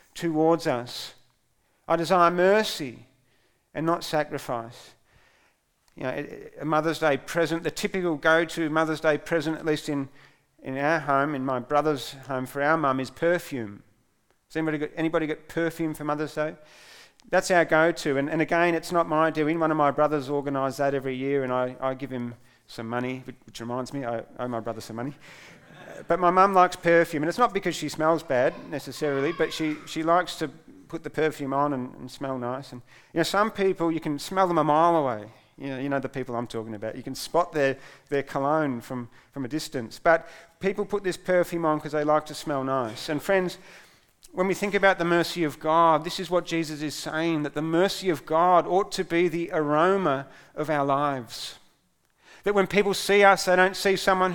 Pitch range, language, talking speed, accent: 135-170 Hz, English, 205 wpm, Australian